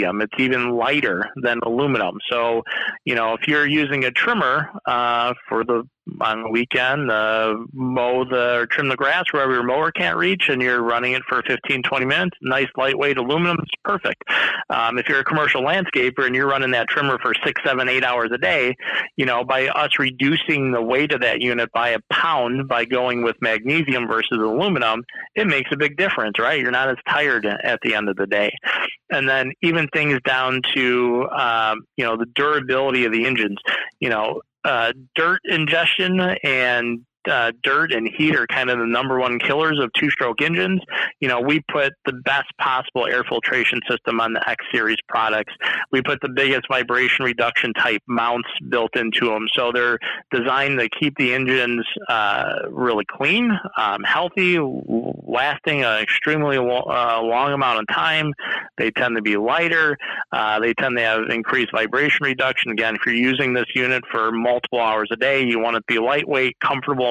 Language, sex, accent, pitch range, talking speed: English, male, American, 120-140 Hz, 185 wpm